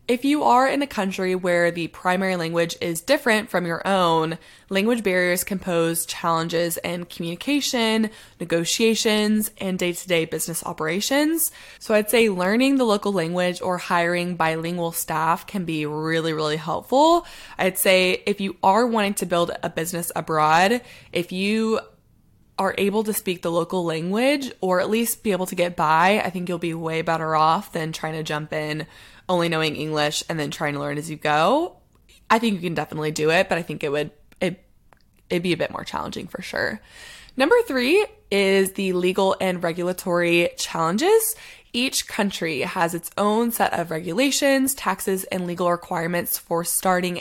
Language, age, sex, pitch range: English, 20-39, female, 165-220 Hz